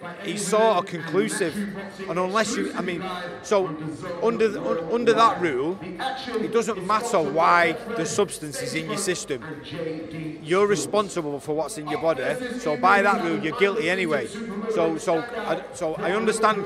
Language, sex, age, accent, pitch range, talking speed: English, male, 30-49, British, 145-195 Hz, 160 wpm